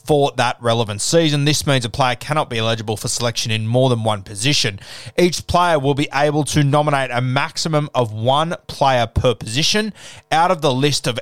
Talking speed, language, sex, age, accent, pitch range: 200 wpm, English, male, 20-39, Australian, 115-150 Hz